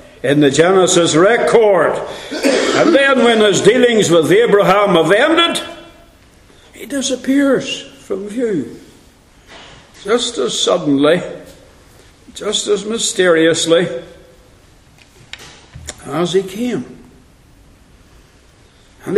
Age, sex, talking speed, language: 60-79, male, 85 wpm, English